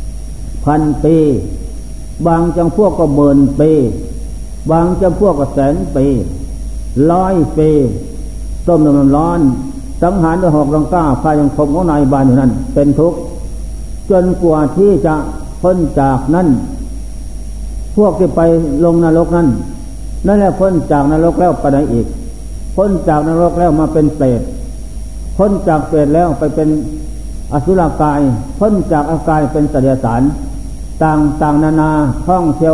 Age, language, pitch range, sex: 60-79, Thai, 140-170 Hz, male